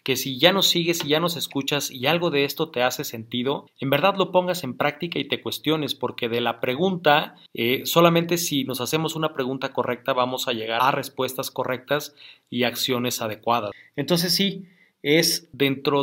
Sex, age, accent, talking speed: male, 40-59, Mexican, 185 wpm